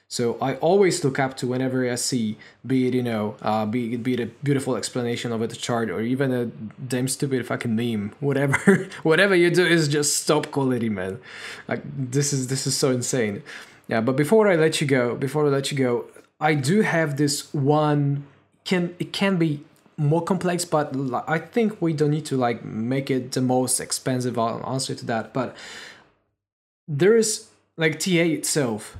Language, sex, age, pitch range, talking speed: English, male, 20-39, 120-150 Hz, 190 wpm